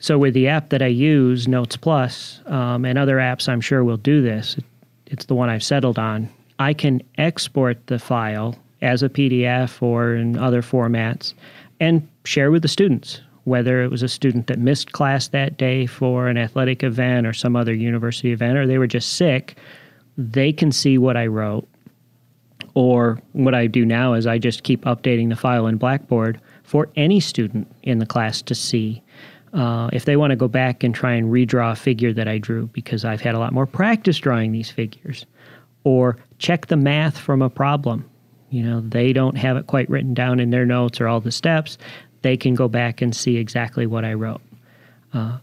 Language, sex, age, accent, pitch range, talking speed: English, male, 30-49, American, 120-140 Hz, 200 wpm